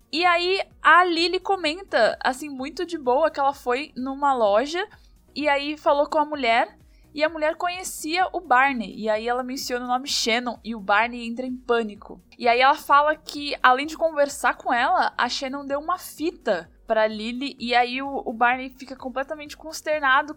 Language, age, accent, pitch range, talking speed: Portuguese, 10-29, Brazilian, 225-295 Hz, 190 wpm